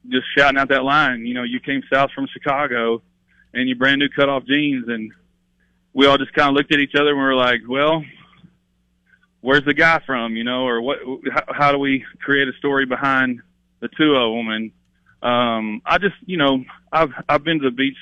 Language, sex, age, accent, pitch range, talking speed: English, male, 30-49, American, 120-140 Hz, 215 wpm